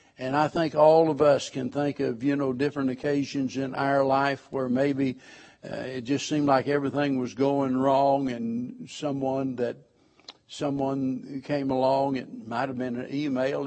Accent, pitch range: American, 130-145 Hz